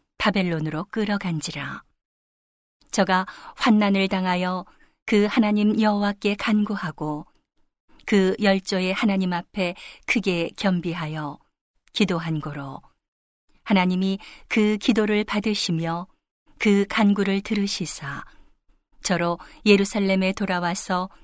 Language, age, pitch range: Korean, 40-59, 180-215 Hz